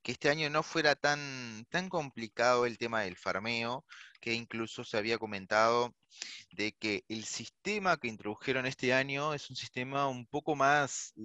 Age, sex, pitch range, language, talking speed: 20-39, male, 110-145 Hz, Spanish, 165 wpm